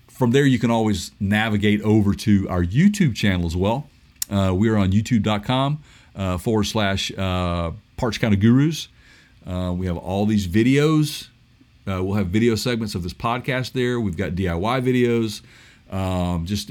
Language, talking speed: English, 160 wpm